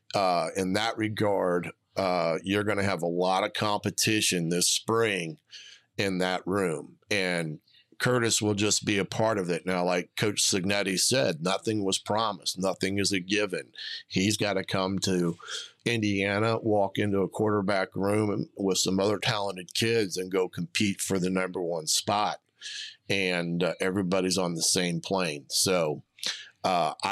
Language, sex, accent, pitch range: English, male, American, 95-105 Hz